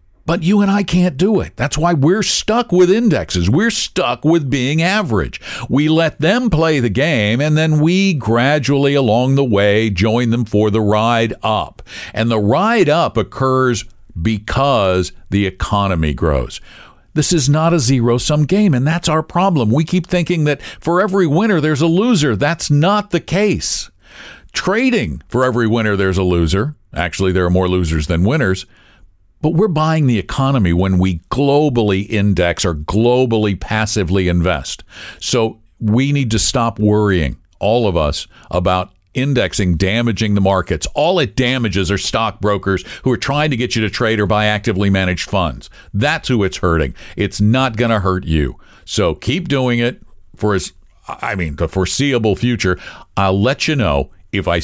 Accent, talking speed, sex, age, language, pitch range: American, 170 wpm, male, 50-69, English, 90-140 Hz